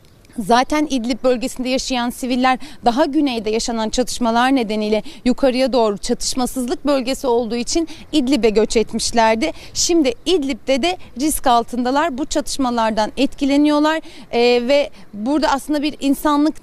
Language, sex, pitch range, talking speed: Turkish, female, 250-300 Hz, 120 wpm